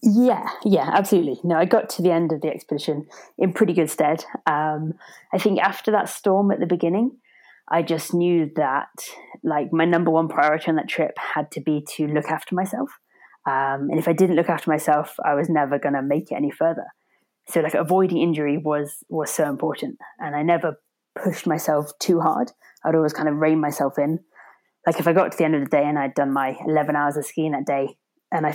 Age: 20-39